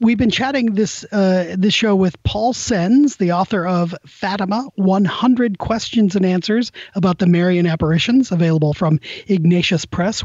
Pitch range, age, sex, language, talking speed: 170-215 Hz, 30-49, male, English, 150 wpm